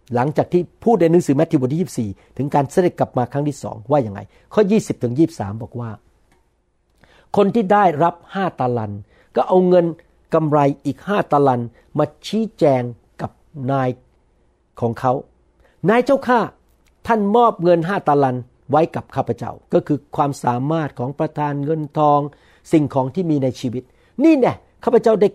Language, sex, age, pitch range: Thai, male, 60-79, 125-175 Hz